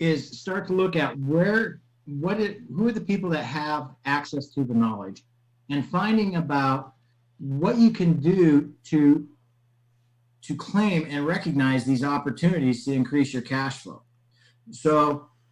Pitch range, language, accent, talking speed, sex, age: 125-160 Hz, English, American, 145 wpm, male, 50-69